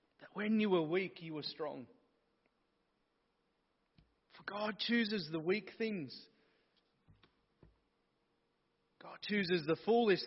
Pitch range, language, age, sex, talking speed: 165-215 Hz, English, 30-49, male, 100 wpm